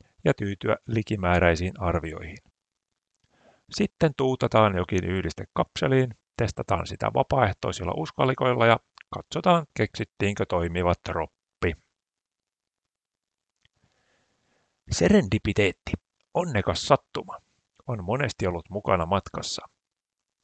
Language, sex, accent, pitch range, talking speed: Finnish, male, native, 95-125 Hz, 75 wpm